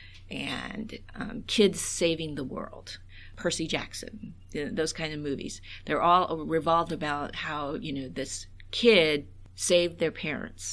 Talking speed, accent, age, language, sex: 145 wpm, American, 50-69, English, female